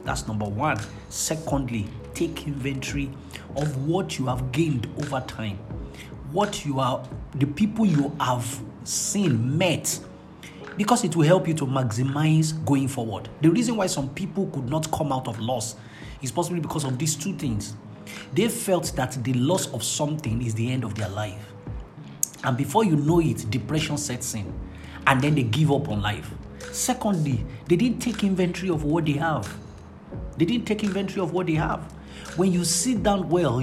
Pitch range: 130-175 Hz